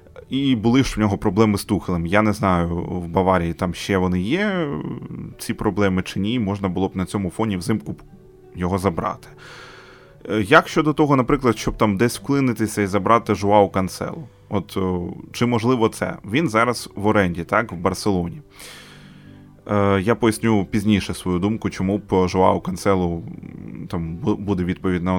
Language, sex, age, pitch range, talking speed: Ukrainian, male, 20-39, 95-110 Hz, 150 wpm